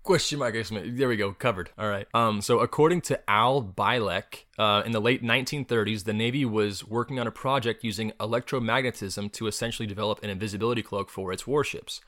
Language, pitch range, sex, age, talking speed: English, 105-125 Hz, male, 20-39, 170 wpm